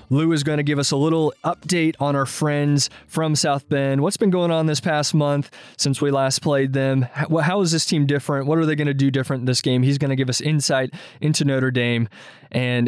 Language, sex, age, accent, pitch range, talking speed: English, male, 20-39, American, 125-150 Hz, 240 wpm